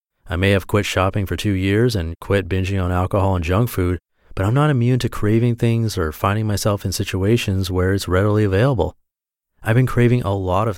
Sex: male